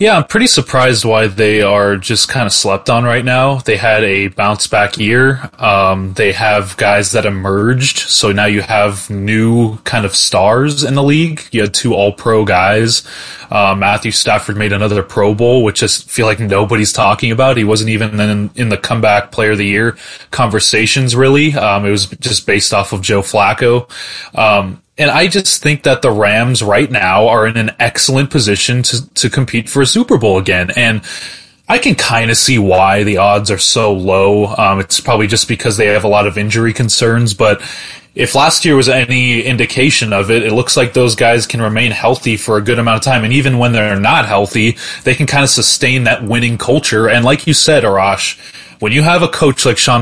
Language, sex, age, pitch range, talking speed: English, male, 20-39, 105-130 Hz, 210 wpm